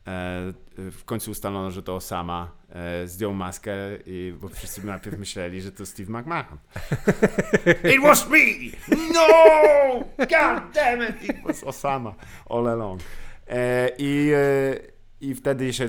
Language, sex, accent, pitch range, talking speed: Polish, male, native, 95-140 Hz, 125 wpm